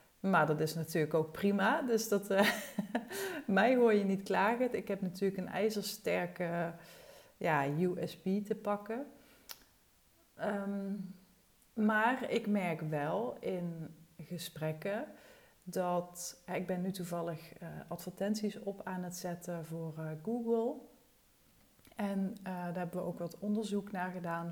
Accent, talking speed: Dutch, 135 wpm